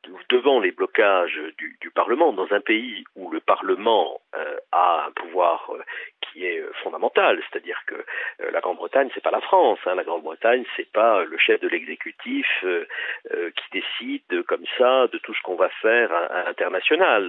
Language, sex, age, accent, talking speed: French, male, 50-69, French, 180 wpm